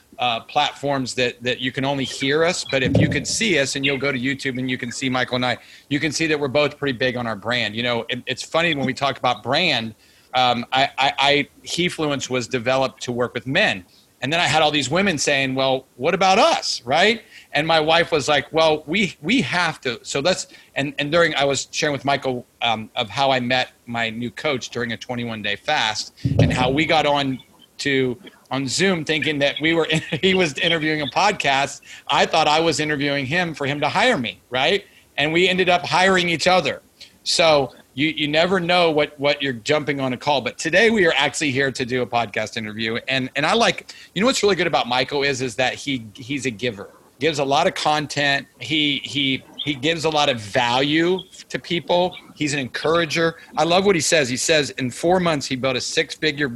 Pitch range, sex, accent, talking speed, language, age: 130-160 Hz, male, American, 225 wpm, English, 40-59